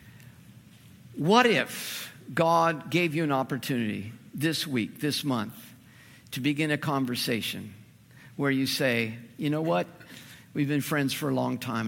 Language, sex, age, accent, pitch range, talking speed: English, male, 50-69, American, 115-140 Hz, 140 wpm